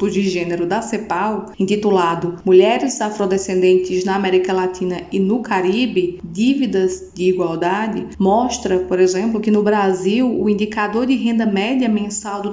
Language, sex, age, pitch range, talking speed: Portuguese, female, 20-39, 190-245 Hz, 140 wpm